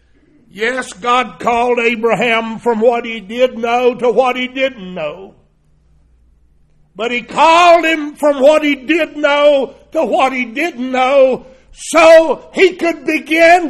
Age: 60-79